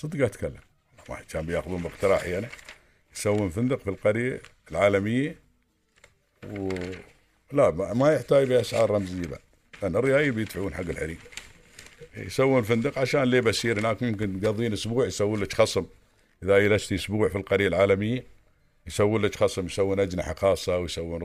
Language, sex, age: Arabic, male, 50-69